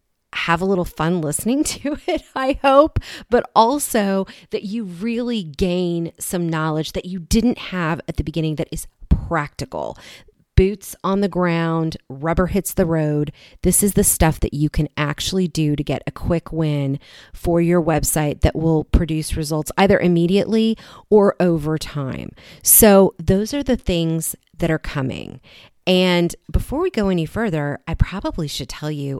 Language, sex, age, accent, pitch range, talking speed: English, female, 30-49, American, 150-195 Hz, 165 wpm